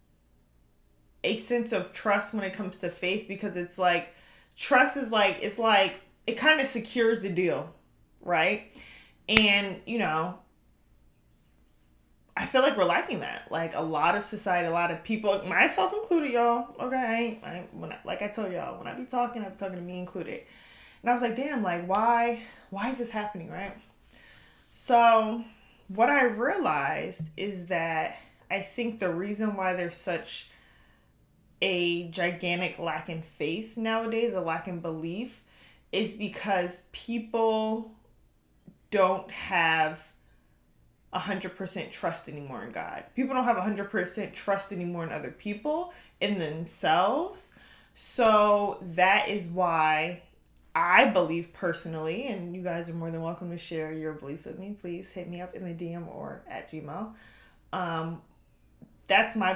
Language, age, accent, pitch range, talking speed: English, 20-39, American, 170-220 Hz, 150 wpm